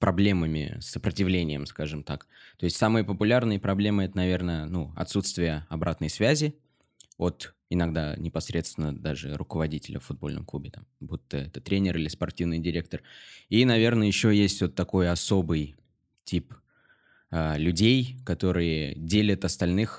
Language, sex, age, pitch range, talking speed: Russian, male, 20-39, 85-105 Hz, 130 wpm